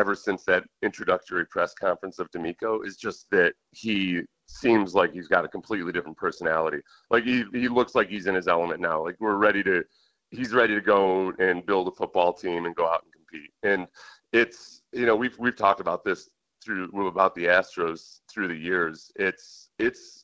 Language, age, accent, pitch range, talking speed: English, 40-59, American, 95-120 Hz, 205 wpm